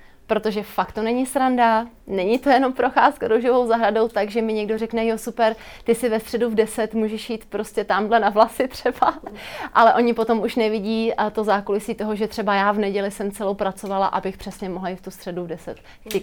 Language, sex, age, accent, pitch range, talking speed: Czech, female, 30-49, native, 200-230 Hz, 210 wpm